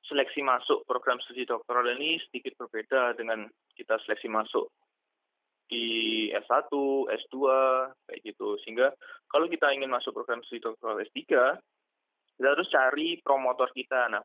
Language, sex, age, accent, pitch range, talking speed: Indonesian, male, 20-39, native, 120-160 Hz, 125 wpm